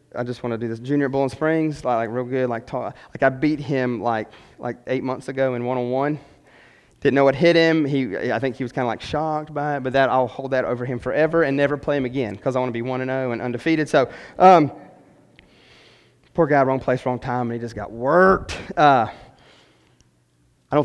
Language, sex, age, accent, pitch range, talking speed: English, male, 30-49, American, 130-215 Hz, 235 wpm